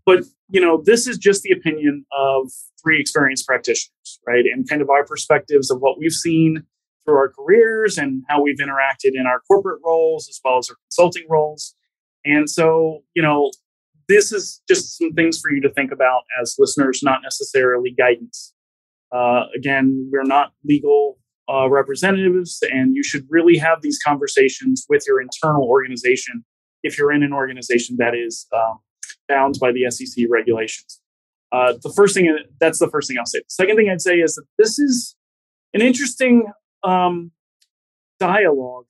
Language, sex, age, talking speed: English, male, 30-49, 170 wpm